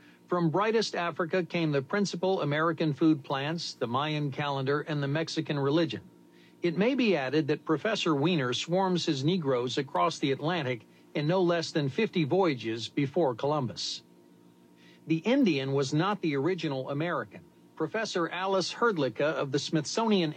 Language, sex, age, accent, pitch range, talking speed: English, male, 50-69, American, 135-170 Hz, 145 wpm